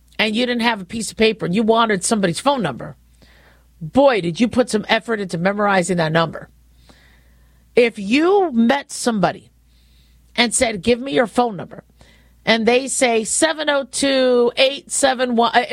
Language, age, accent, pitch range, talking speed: English, 50-69, American, 190-265 Hz, 150 wpm